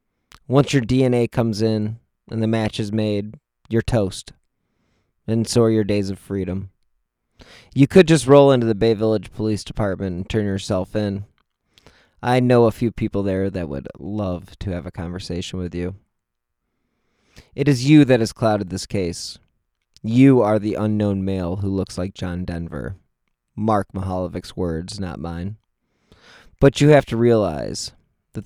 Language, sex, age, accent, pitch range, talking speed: English, male, 20-39, American, 95-115 Hz, 160 wpm